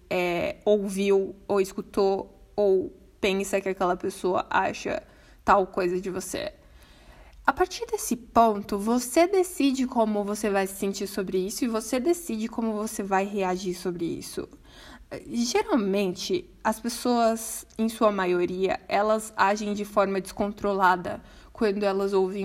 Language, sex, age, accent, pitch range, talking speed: Portuguese, female, 20-39, Brazilian, 195-230 Hz, 135 wpm